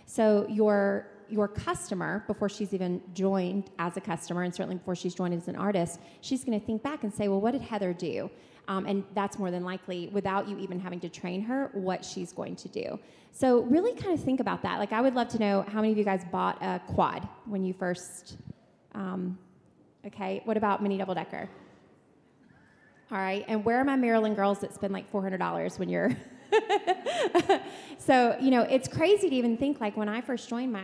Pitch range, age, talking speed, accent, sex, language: 190-235 Hz, 30-49, 210 wpm, American, female, English